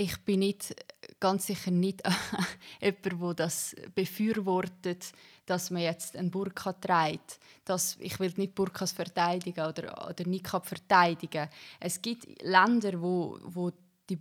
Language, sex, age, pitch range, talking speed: German, female, 20-39, 170-200 Hz, 130 wpm